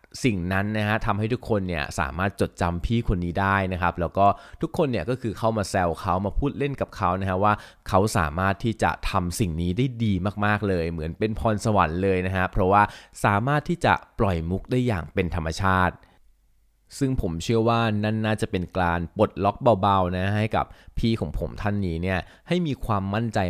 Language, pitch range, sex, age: Thai, 85-110 Hz, male, 20-39